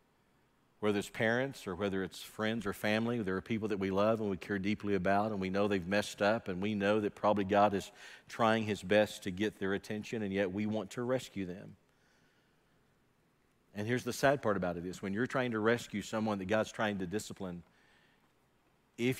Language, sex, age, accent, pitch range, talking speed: English, male, 50-69, American, 100-125 Hz, 210 wpm